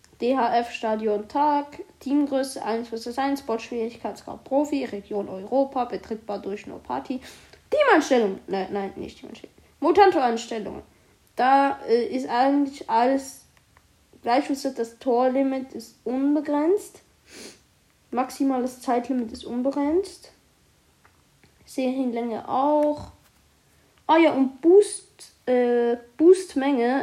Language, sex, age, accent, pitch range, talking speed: German, female, 20-39, German, 225-280 Hz, 100 wpm